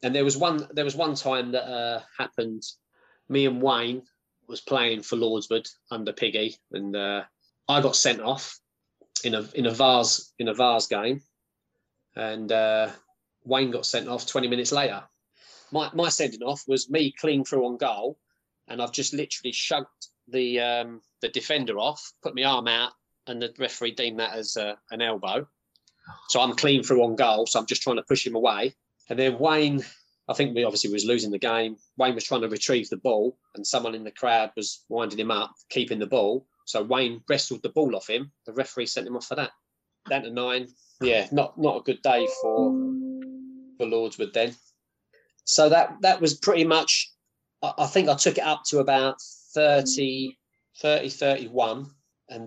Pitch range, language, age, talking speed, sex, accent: 115-140 Hz, English, 20-39, 190 wpm, male, British